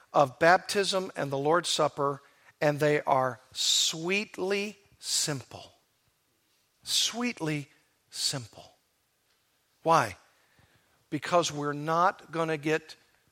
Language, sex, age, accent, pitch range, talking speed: English, male, 50-69, American, 140-180 Hz, 85 wpm